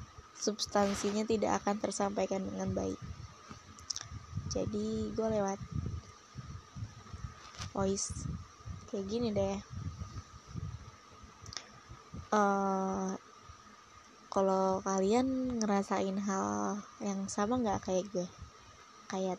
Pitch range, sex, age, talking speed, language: 190-205 Hz, female, 20-39, 75 wpm, Indonesian